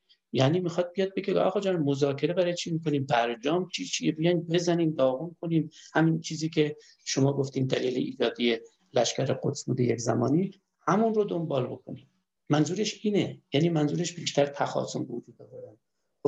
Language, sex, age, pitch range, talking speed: Persian, male, 60-79, 135-170 Hz, 150 wpm